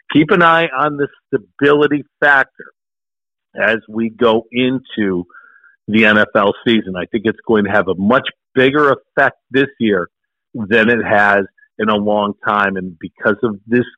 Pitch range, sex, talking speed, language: 105-130 Hz, male, 160 wpm, English